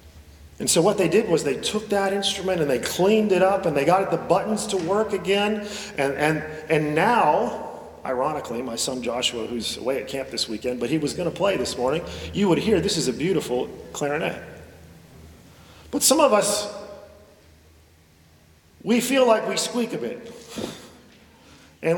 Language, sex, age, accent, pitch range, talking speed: English, male, 40-59, American, 135-205 Hz, 170 wpm